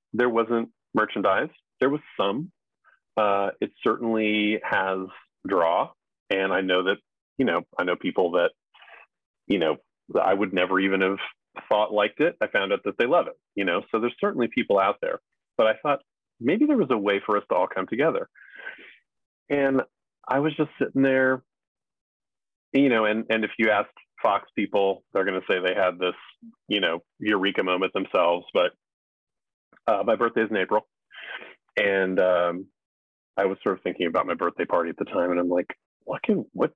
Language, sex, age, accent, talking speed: English, male, 30-49, American, 185 wpm